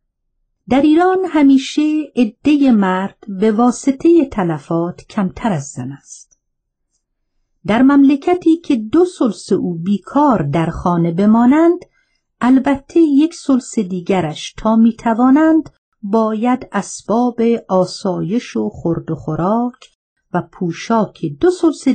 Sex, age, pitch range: female, 50-69, 170-265 Hz